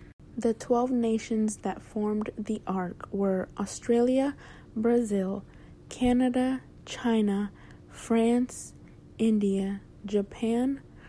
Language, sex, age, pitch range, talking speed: English, female, 20-39, 200-240 Hz, 80 wpm